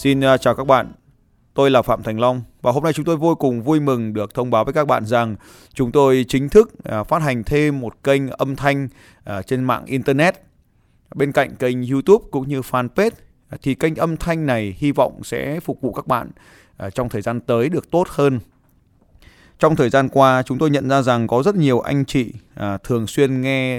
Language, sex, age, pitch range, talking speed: Vietnamese, male, 20-39, 115-140 Hz, 205 wpm